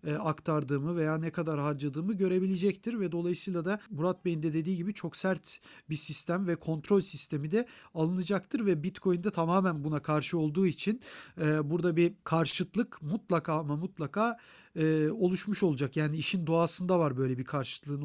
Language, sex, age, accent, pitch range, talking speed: Turkish, male, 40-59, native, 160-195 Hz, 150 wpm